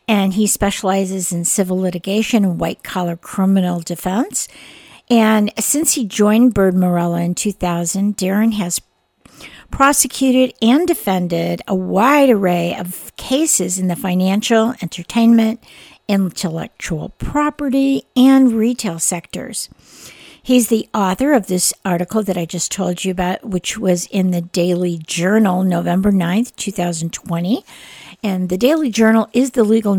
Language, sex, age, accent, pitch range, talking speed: English, female, 50-69, American, 180-225 Hz, 130 wpm